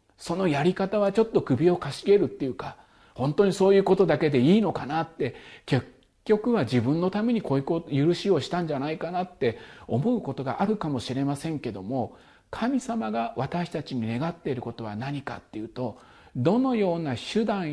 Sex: male